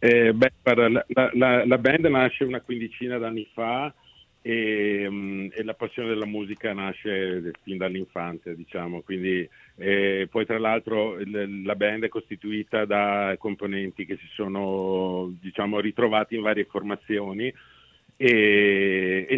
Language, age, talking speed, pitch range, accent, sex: Italian, 50-69, 135 wpm, 100-115 Hz, native, male